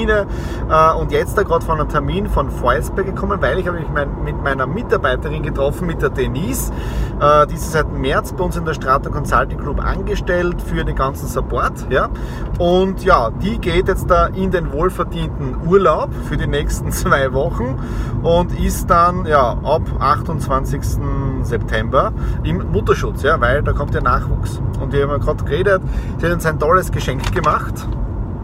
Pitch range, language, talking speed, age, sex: 125-170 Hz, German, 165 wpm, 30-49, male